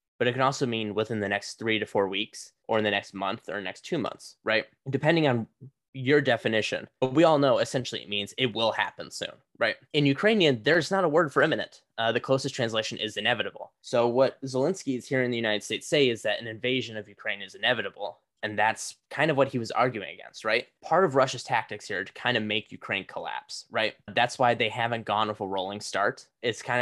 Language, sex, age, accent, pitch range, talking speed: English, male, 10-29, American, 105-130 Hz, 230 wpm